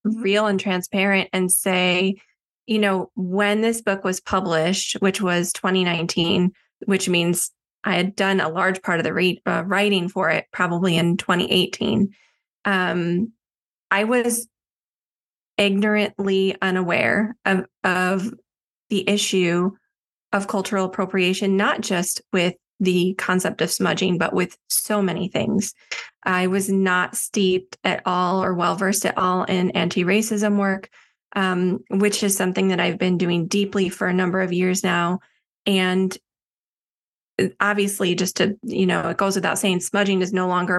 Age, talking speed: 20-39, 145 wpm